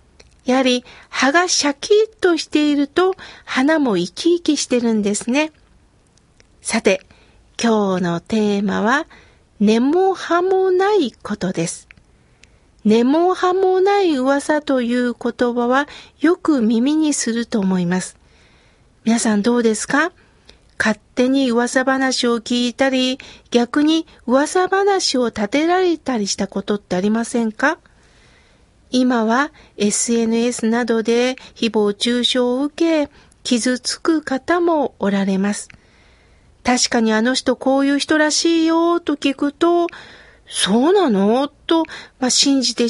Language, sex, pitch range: Japanese, female, 230-315 Hz